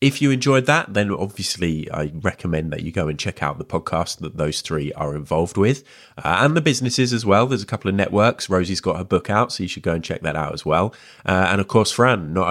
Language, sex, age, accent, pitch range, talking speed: English, male, 20-39, British, 80-105 Hz, 260 wpm